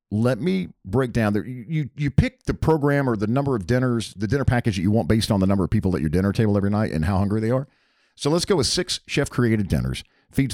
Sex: male